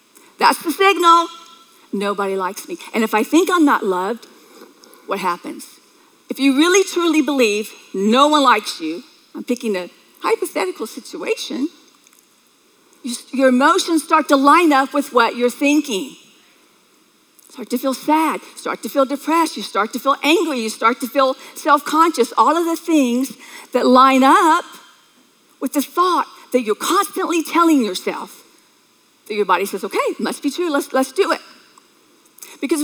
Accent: American